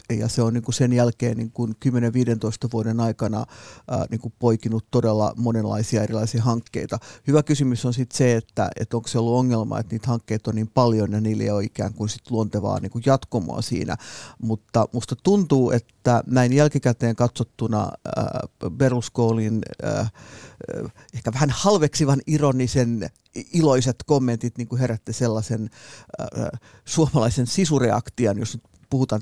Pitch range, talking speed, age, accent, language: 115-130 Hz, 120 wpm, 50-69, native, Finnish